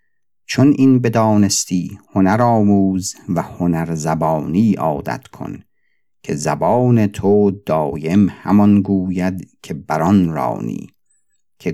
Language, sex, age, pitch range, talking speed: Persian, male, 50-69, 90-105 Hz, 95 wpm